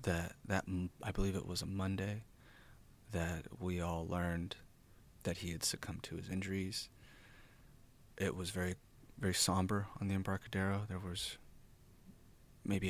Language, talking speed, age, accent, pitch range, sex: English, 140 wpm, 30-49, American, 90-100 Hz, male